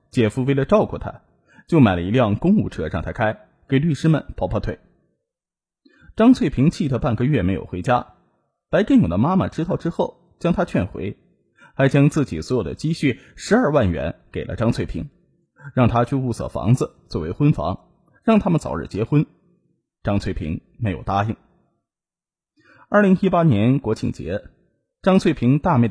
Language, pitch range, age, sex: Chinese, 110-165 Hz, 20-39, male